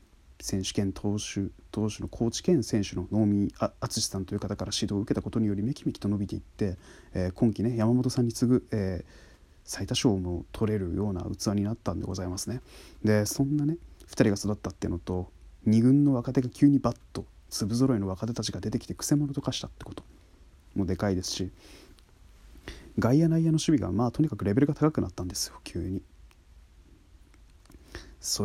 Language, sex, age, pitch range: Japanese, male, 30-49, 90-120 Hz